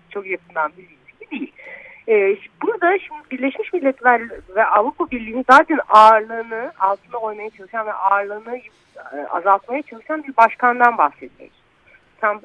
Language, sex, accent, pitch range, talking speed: Turkish, female, native, 195-330 Hz, 120 wpm